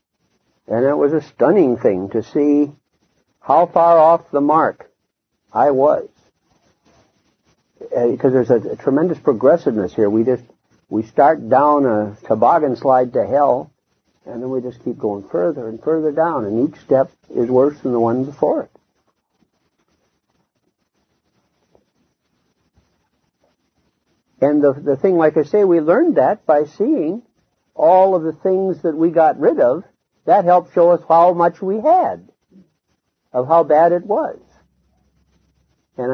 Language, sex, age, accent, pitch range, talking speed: English, male, 60-79, American, 130-170 Hz, 145 wpm